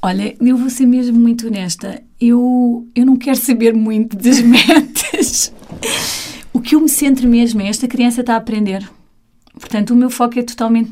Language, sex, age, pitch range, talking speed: Portuguese, female, 30-49, 205-240 Hz, 180 wpm